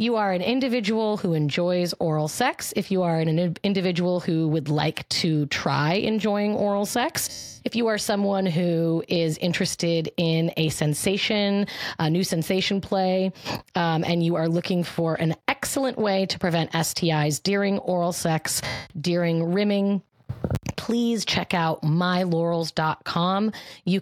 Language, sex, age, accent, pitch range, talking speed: English, female, 30-49, American, 160-205 Hz, 145 wpm